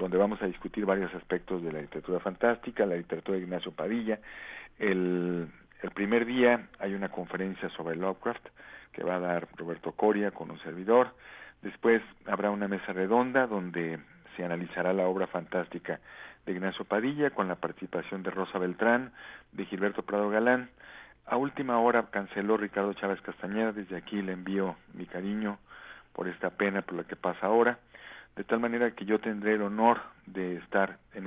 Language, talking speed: Spanish, 170 wpm